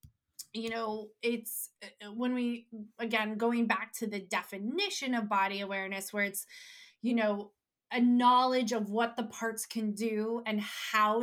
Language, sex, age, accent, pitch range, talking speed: English, female, 20-39, American, 205-245 Hz, 150 wpm